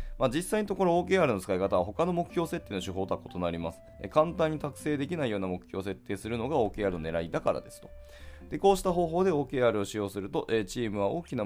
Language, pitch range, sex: Japanese, 95-140 Hz, male